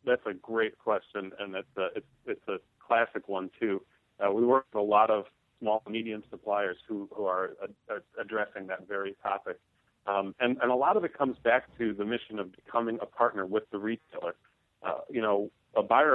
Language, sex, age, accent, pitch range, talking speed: English, male, 40-59, American, 100-125 Hz, 195 wpm